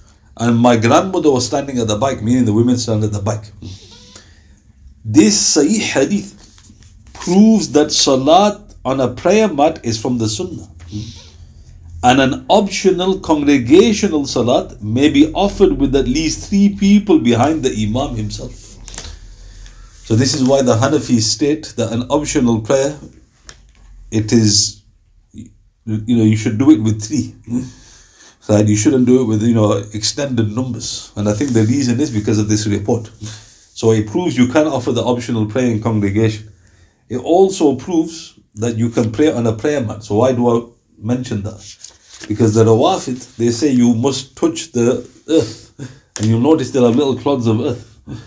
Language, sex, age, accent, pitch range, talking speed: English, male, 50-69, Indian, 105-135 Hz, 165 wpm